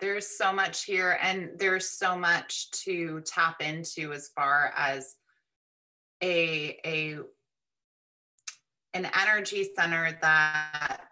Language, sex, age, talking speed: English, female, 20-39, 110 wpm